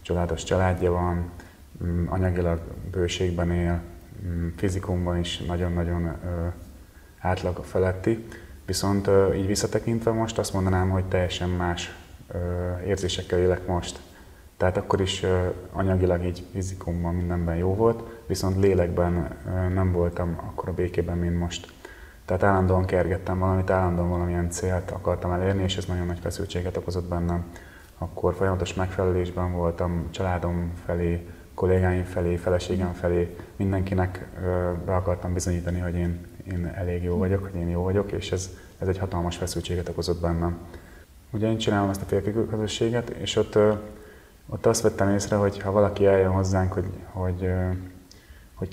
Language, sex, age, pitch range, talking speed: Hungarian, male, 30-49, 85-95 Hz, 135 wpm